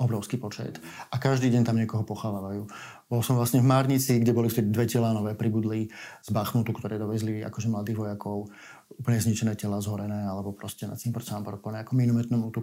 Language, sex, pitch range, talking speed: Slovak, male, 110-140 Hz, 180 wpm